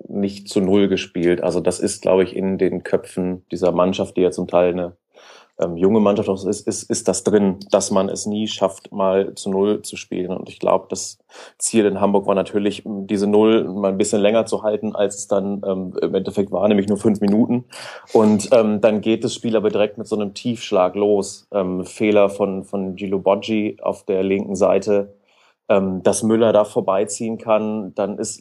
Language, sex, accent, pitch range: German, male, German, 95-110 Hz